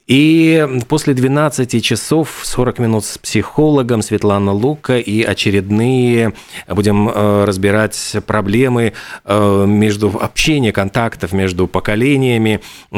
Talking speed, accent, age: 95 wpm, native, 40-59